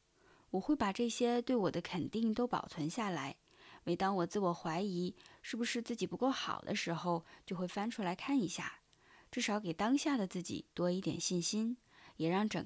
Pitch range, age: 175-245 Hz, 20-39